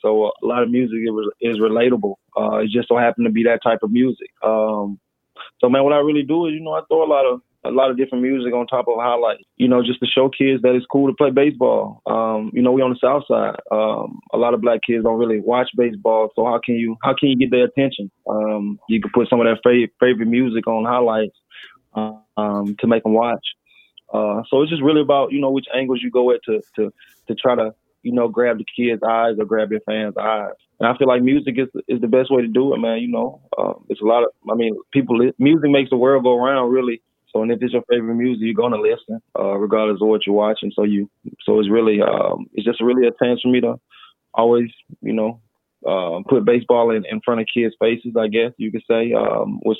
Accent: American